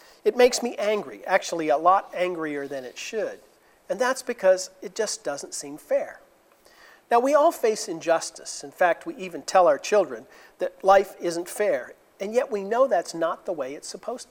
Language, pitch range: English, 155-205 Hz